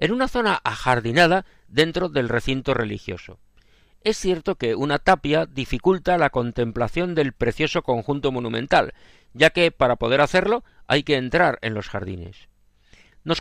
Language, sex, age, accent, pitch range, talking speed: Spanish, male, 50-69, Spanish, 125-180 Hz, 145 wpm